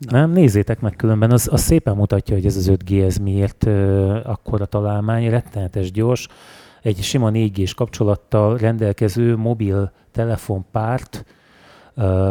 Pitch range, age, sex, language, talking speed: 100-120 Hz, 30-49, male, Hungarian, 125 wpm